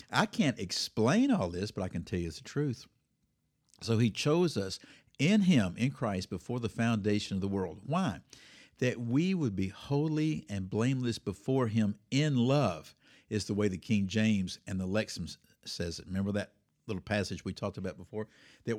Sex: male